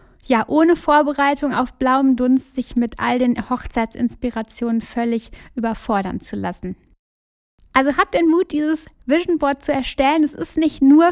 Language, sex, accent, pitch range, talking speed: German, female, German, 240-295 Hz, 150 wpm